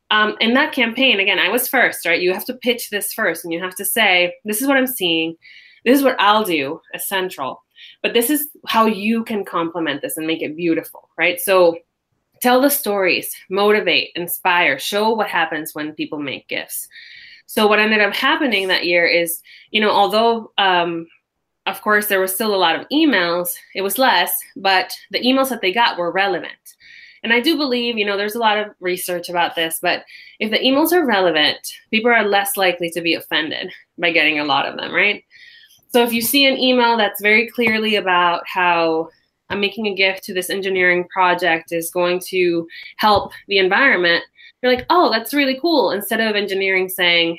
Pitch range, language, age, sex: 180-240 Hz, English, 20-39, female